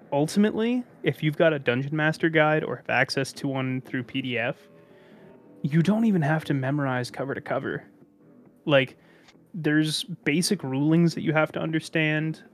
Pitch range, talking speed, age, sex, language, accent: 125-155 Hz, 160 wpm, 20-39, male, English, American